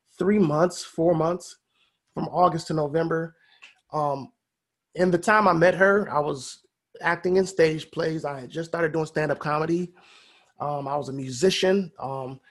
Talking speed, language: 165 wpm, English